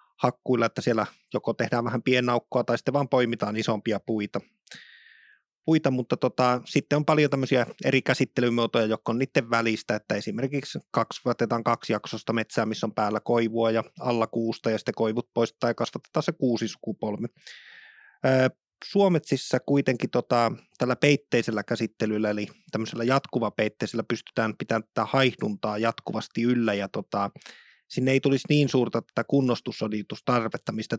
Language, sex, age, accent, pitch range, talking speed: Finnish, male, 20-39, native, 115-135 Hz, 140 wpm